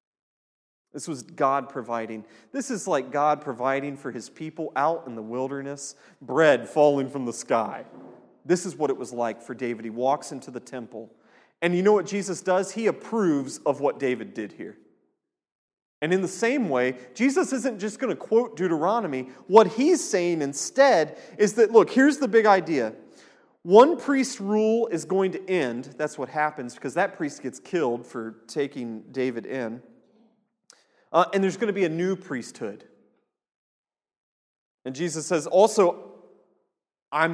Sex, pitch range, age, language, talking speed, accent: male, 125-195 Hz, 30-49, English, 165 wpm, American